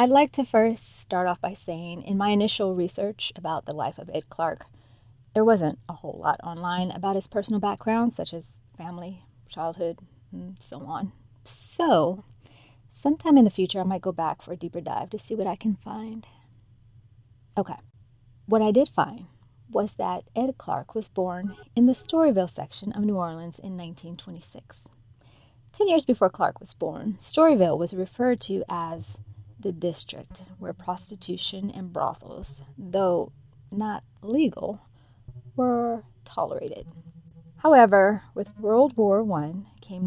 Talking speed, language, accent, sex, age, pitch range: 155 wpm, English, American, female, 30-49, 135-215 Hz